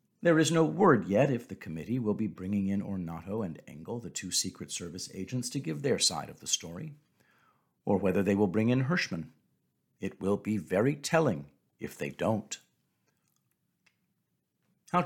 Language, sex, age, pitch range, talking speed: English, male, 50-69, 100-140 Hz, 170 wpm